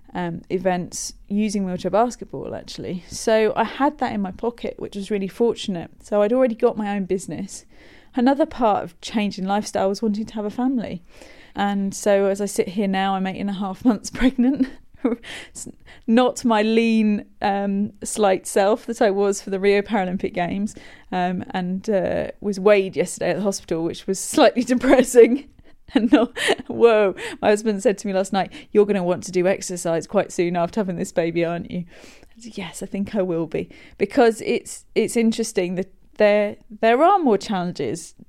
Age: 30-49